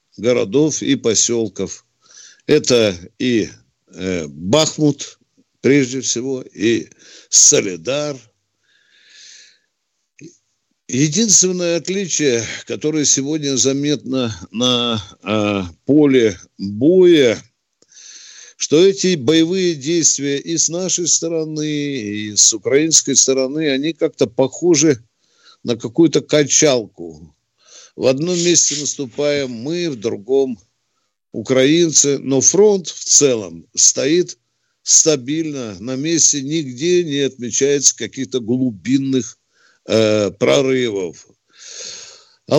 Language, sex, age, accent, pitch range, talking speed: Russian, male, 50-69, native, 120-160 Hz, 85 wpm